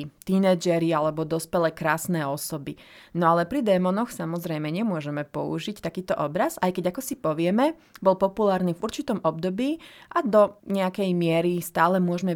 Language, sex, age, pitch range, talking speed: Slovak, female, 30-49, 165-195 Hz, 145 wpm